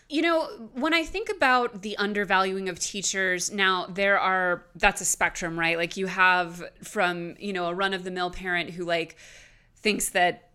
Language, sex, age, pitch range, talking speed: English, female, 20-39, 170-210 Hz, 190 wpm